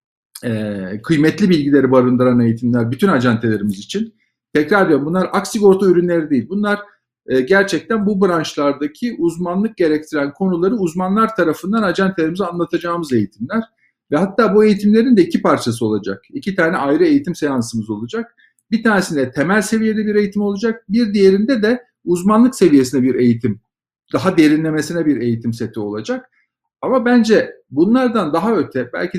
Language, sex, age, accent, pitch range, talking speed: Turkish, male, 50-69, native, 130-215 Hz, 140 wpm